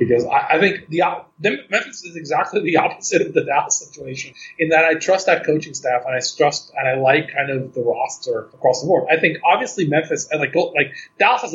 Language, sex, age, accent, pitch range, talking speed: English, male, 30-49, American, 130-205 Hz, 220 wpm